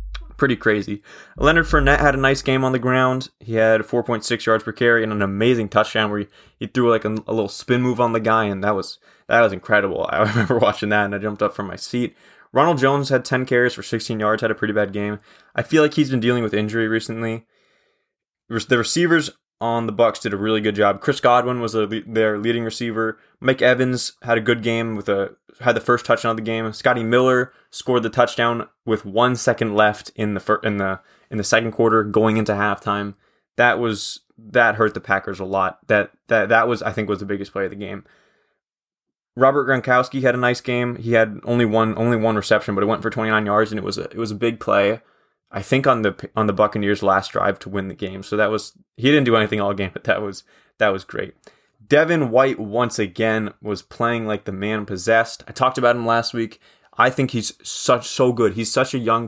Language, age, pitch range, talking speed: English, 20-39, 105-125 Hz, 230 wpm